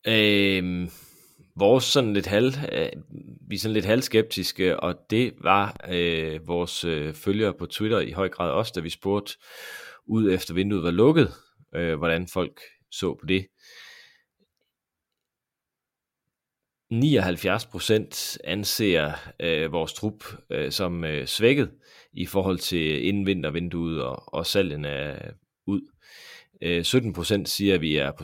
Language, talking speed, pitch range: Danish, 130 wpm, 85-105 Hz